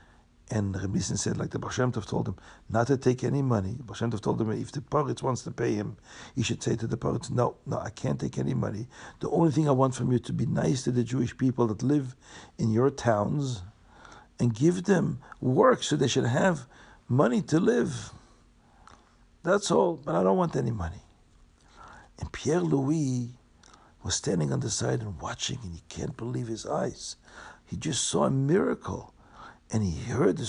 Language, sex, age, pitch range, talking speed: English, male, 60-79, 105-130 Hz, 200 wpm